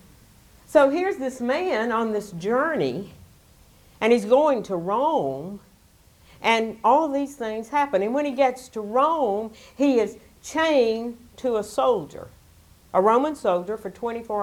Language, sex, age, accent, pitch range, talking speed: English, female, 60-79, American, 185-255 Hz, 140 wpm